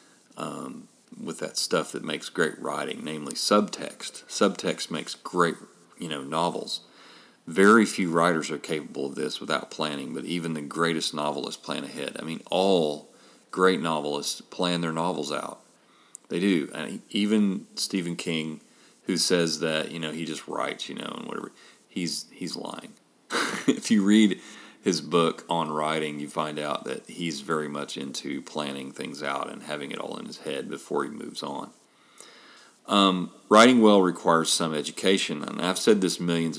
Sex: male